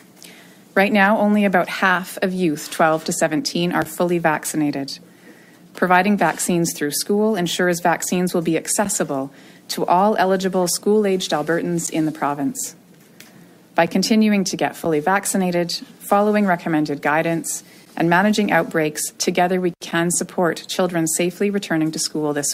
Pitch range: 160-190 Hz